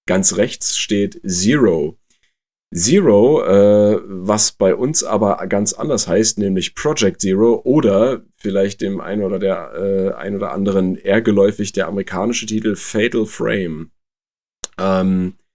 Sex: male